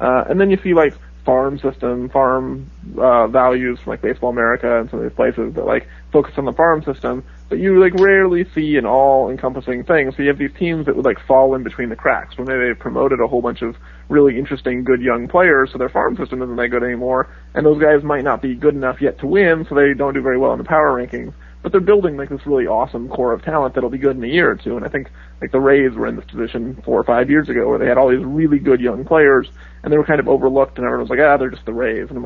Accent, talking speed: American, 275 wpm